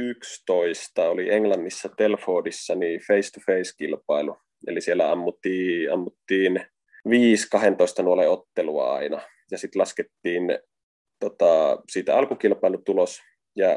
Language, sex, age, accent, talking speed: Finnish, male, 20-39, native, 90 wpm